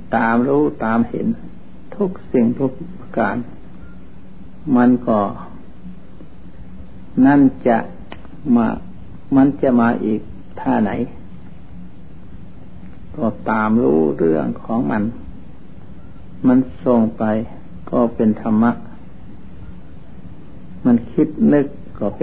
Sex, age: male, 60-79